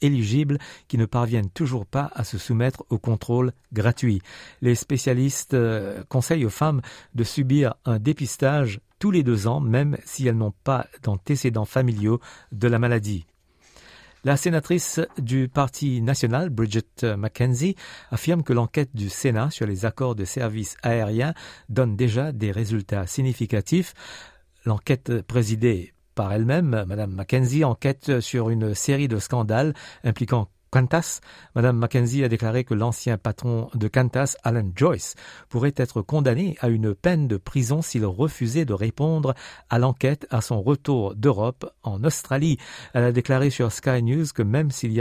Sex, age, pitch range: male, 50-69, 110-140 Hz